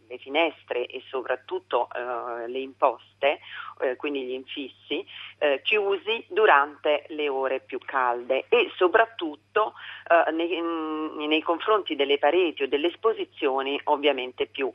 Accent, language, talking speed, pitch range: native, Italian, 125 wpm, 140-210 Hz